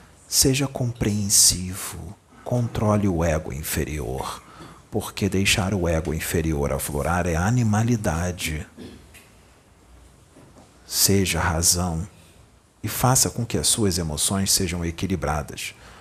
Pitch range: 80-105 Hz